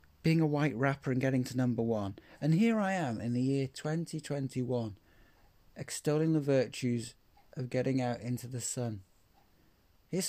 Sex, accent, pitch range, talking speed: male, British, 105-140 Hz, 155 wpm